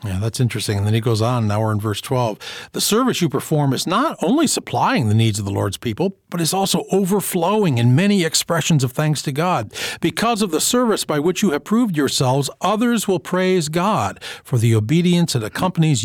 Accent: American